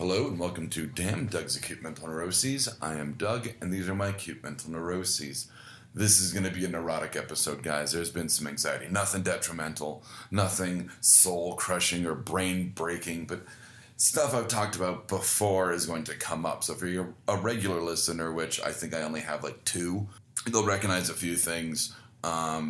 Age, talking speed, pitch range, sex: 30-49, 180 wpm, 85-100 Hz, male